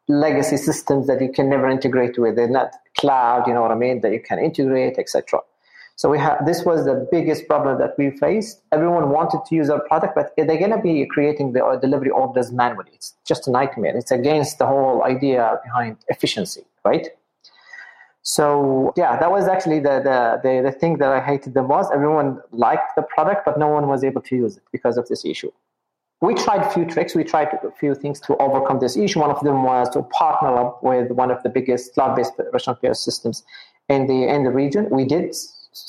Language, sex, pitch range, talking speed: English, male, 130-155 Hz, 215 wpm